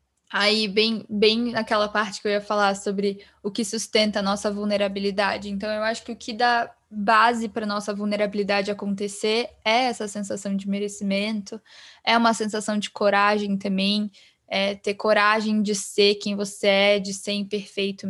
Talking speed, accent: 170 wpm, Brazilian